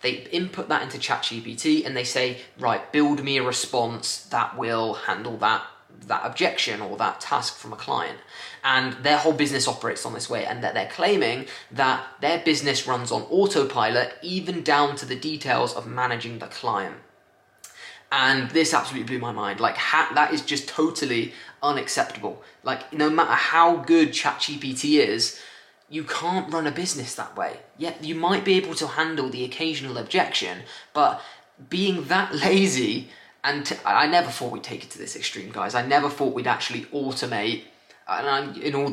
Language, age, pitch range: English, 20-39, 125-160 Hz